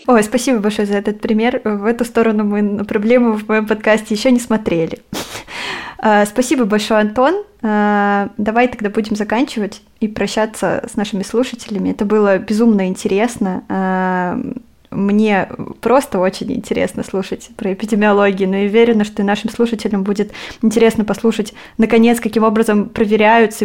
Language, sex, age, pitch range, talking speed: Russian, female, 20-39, 200-230 Hz, 140 wpm